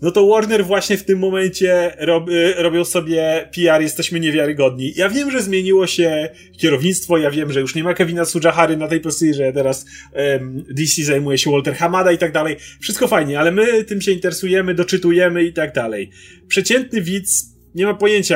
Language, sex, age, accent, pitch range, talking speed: Polish, male, 30-49, native, 155-190 Hz, 180 wpm